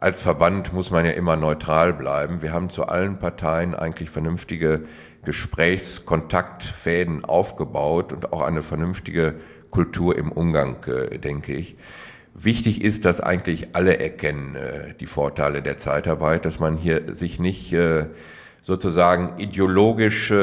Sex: male